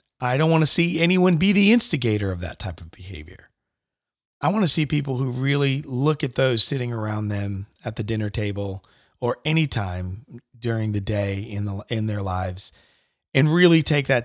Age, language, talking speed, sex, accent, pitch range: 40-59, English, 190 wpm, male, American, 105-145 Hz